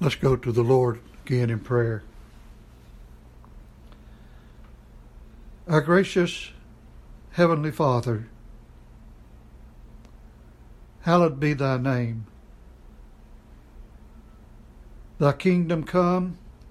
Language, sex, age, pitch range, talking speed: English, male, 60-79, 110-160 Hz, 70 wpm